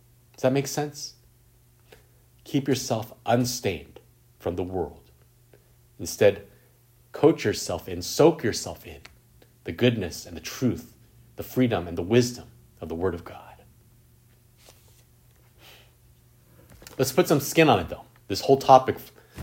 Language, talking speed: English, 130 wpm